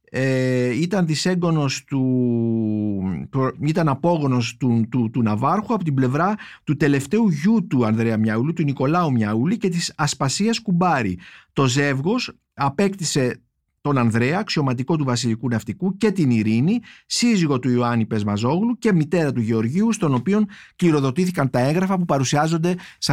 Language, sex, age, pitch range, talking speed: Greek, male, 50-69, 130-175 Hz, 145 wpm